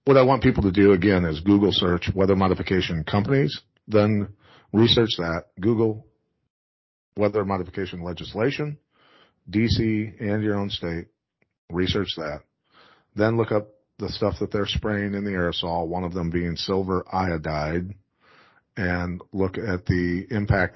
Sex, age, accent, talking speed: male, 40-59, American, 140 wpm